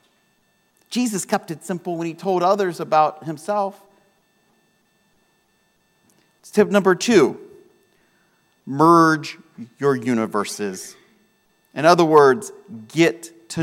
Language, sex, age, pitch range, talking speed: English, male, 40-59, 135-215 Hz, 95 wpm